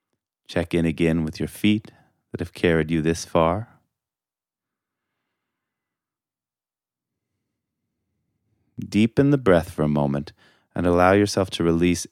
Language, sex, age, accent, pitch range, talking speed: English, male, 30-49, American, 80-110 Hz, 115 wpm